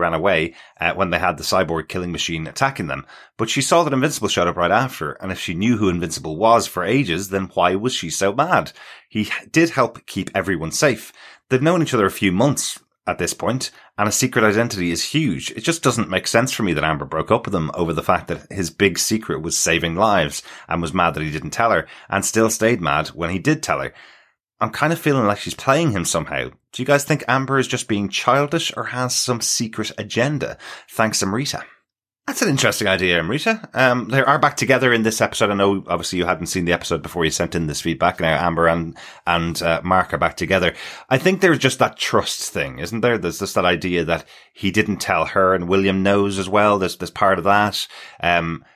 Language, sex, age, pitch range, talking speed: English, male, 30-49, 85-120 Hz, 230 wpm